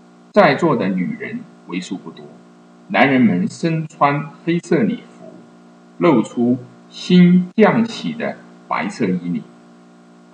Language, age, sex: Chinese, 50-69, male